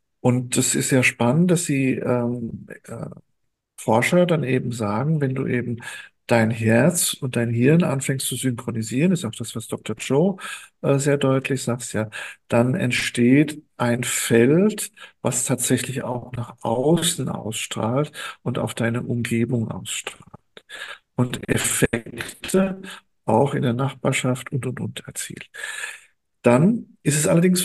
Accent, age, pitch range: German, 50-69, 120-155 Hz